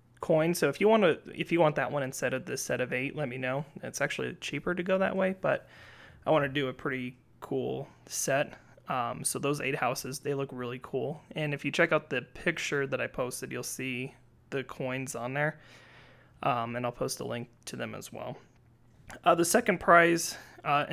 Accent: American